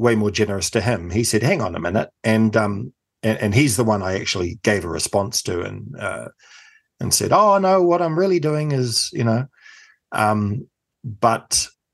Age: 60-79